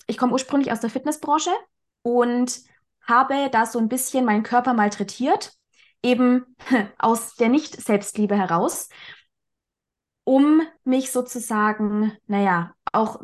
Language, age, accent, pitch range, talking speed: German, 20-39, German, 220-270 Hz, 115 wpm